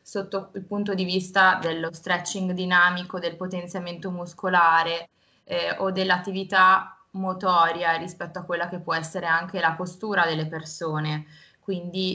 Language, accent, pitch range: Italian, native, 170-195 Hz